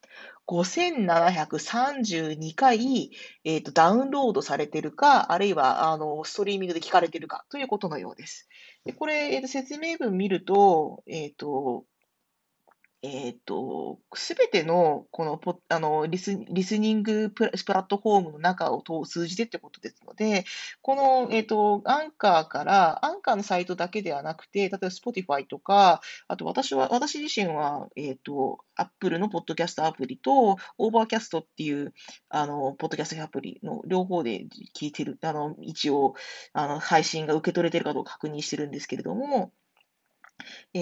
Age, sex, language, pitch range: 40-59, female, Japanese, 155-225 Hz